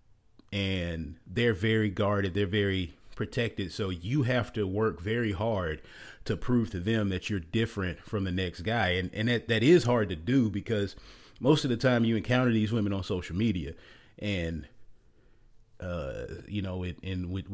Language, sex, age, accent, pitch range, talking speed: English, male, 30-49, American, 95-110 Hz, 180 wpm